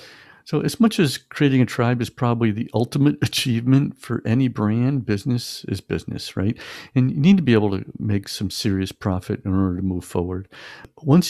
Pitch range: 100-140 Hz